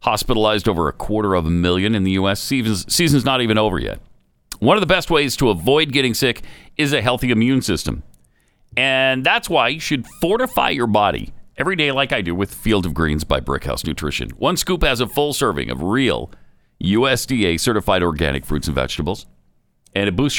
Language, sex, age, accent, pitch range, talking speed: English, male, 50-69, American, 95-150 Hz, 195 wpm